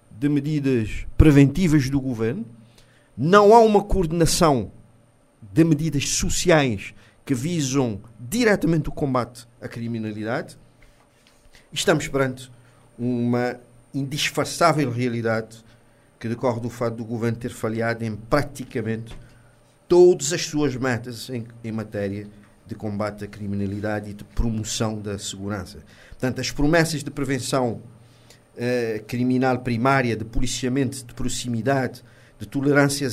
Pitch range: 115-145 Hz